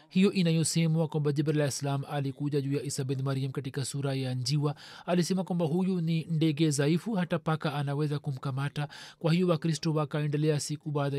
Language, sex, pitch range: Swahili, male, 145-165 Hz